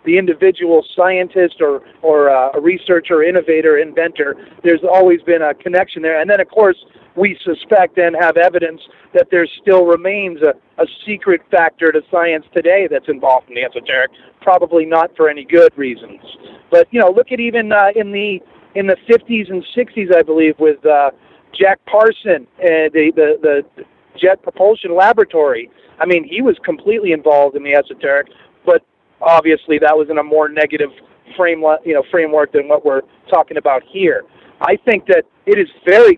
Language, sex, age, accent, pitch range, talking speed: English, male, 40-59, American, 160-225 Hz, 175 wpm